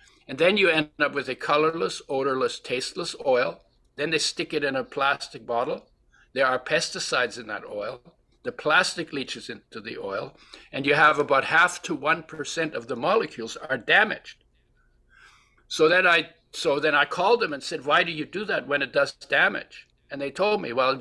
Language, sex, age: English, male, 60-79